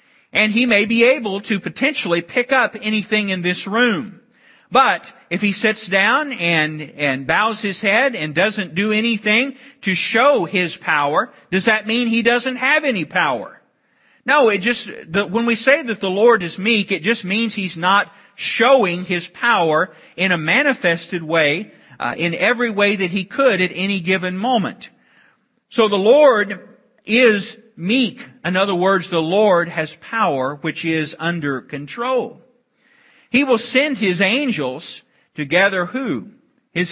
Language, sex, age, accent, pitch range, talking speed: English, male, 40-59, American, 175-235 Hz, 160 wpm